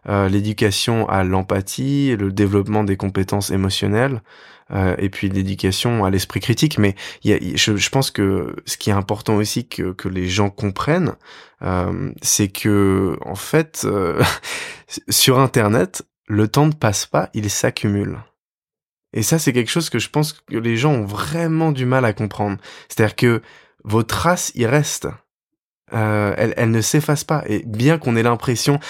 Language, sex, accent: French, male, French